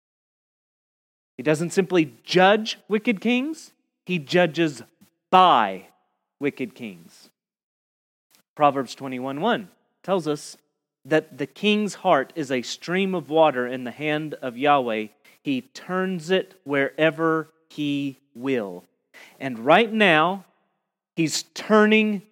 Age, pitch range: 30-49, 145-195 Hz